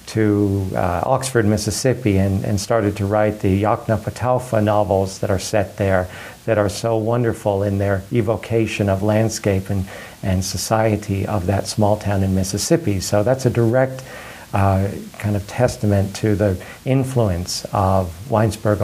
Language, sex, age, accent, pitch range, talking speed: English, male, 50-69, American, 100-120 Hz, 155 wpm